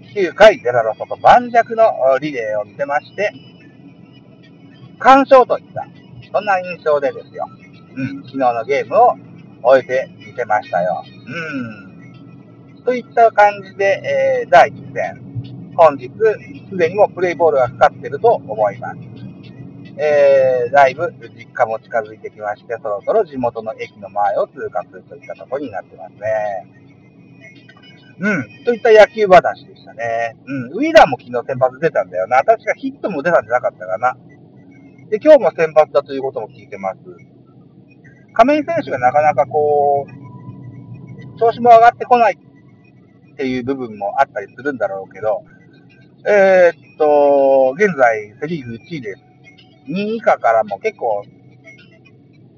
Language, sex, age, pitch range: Japanese, male, 50-69, 135-210 Hz